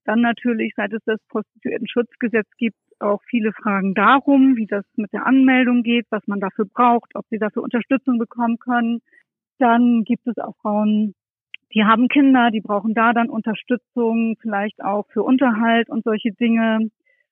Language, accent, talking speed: German, German, 165 wpm